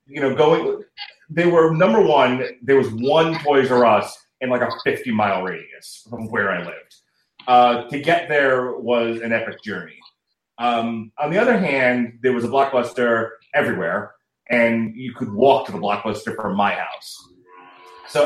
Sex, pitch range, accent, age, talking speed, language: male, 110-150 Hz, American, 30-49, 170 wpm, English